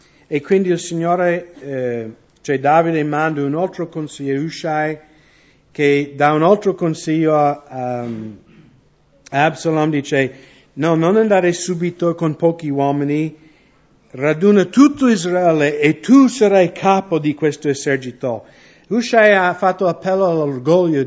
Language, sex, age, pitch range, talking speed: English, male, 50-69, 140-175 Hz, 125 wpm